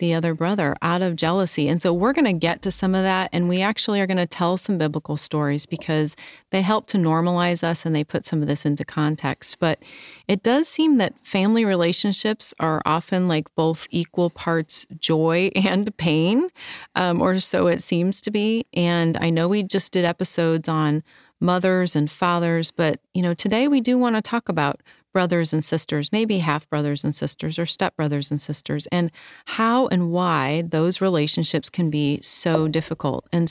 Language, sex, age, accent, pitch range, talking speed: English, female, 30-49, American, 160-195 Hz, 190 wpm